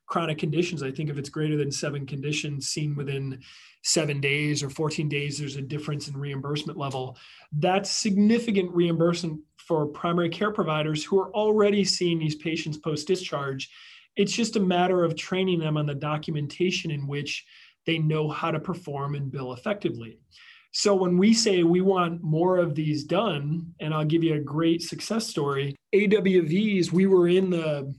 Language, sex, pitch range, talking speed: English, male, 150-185 Hz, 170 wpm